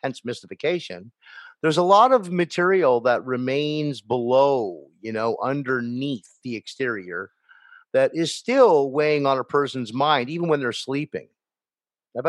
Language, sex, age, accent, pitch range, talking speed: English, male, 50-69, American, 115-150 Hz, 135 wpm